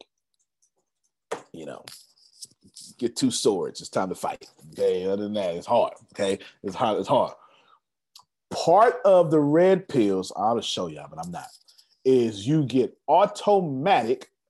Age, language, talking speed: 40-59, English, 145 wpm